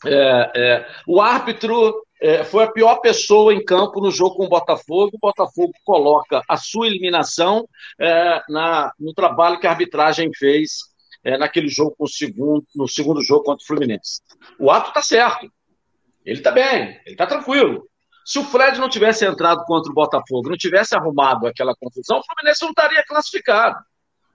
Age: 50-69